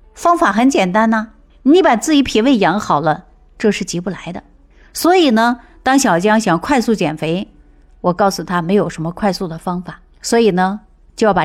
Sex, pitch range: female, 165-220 Hz